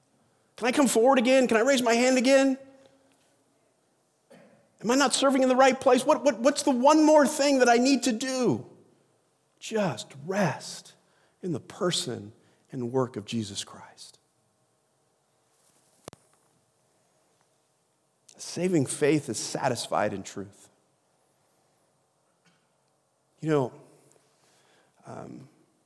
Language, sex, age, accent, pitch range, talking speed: English, male, 40-59, American, 125-205 Hz, 110 wpm